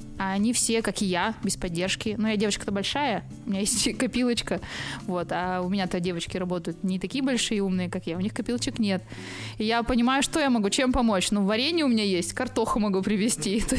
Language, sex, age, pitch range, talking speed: Russian, female, 20-39, 190-230 Hz, 215 wpm